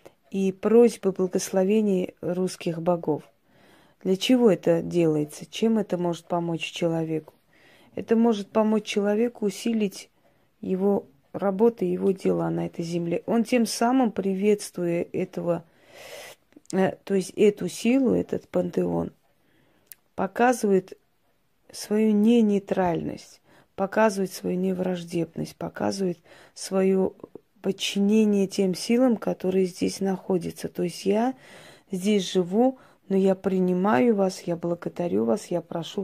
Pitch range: 175-205 Hz